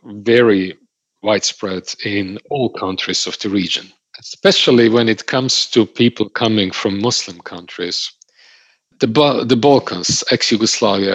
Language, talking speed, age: German, 120 wpm, 50-69